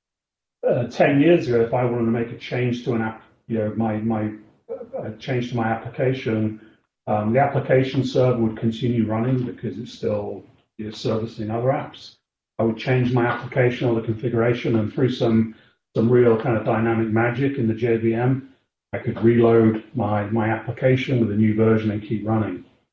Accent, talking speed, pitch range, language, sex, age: British, 185 wpm, 110-125 Hz, English, male, 40-59